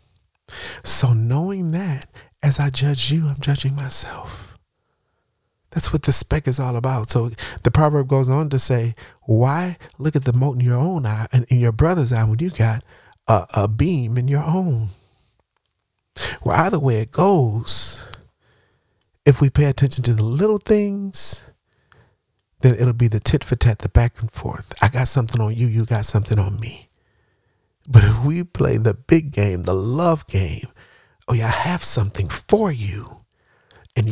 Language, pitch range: English, 105-140 Hz